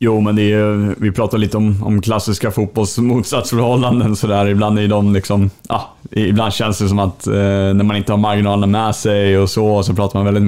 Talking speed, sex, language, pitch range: 195 wpm, male, Swedish, 100-110 Hz